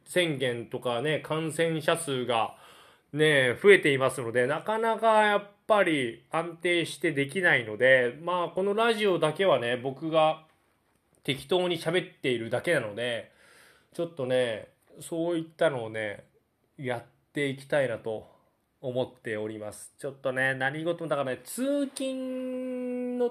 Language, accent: Japanese, native